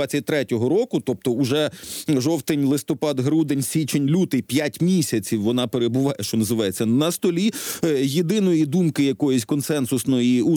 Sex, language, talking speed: male, Ukrainian, 125 wpm